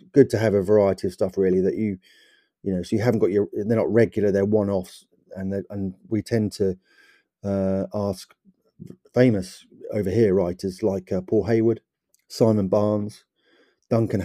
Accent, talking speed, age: British, 175 wpm, 30-49